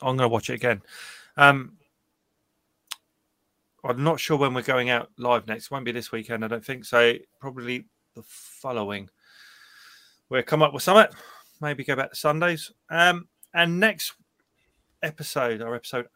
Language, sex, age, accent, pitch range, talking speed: English, male, 20-39, British, 120-170 Hz, 165 wpm